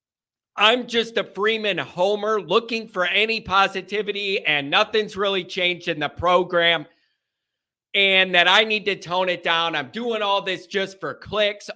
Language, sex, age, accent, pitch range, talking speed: English, male, 40-59, American, 175-220 Hz, 160 wpm